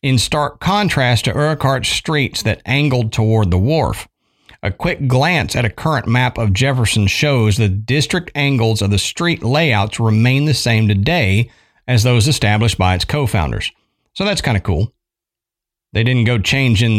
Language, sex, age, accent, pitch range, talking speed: English, male, 50-69, American, 110-140 Hz, 165 wpm